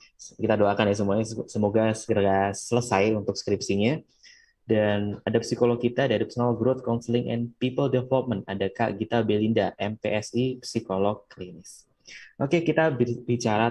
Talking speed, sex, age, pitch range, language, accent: 130 wpm, male, 20-39, 100-120 Hz, English, Indonesian